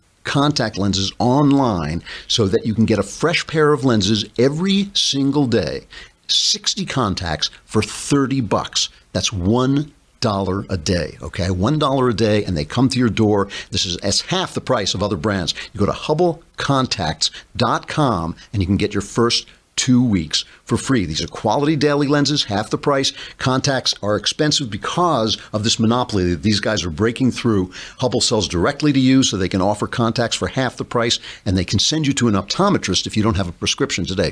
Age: 50-69